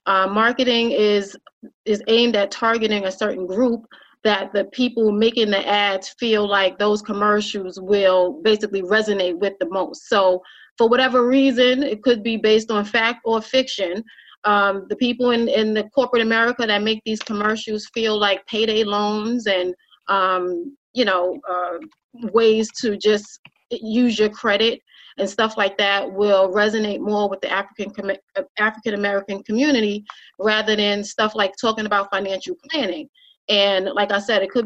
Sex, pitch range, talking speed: female, 195-230 Hz, 155 wpm